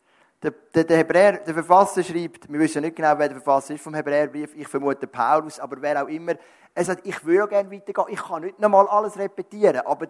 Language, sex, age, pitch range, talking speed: German, male, 30-49, 140-170 Hz, 230 wpm